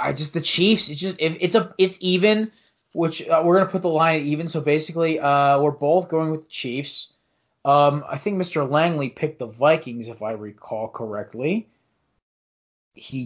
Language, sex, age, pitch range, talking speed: English, male, 20-39, 145-185 Hz, 190 wpm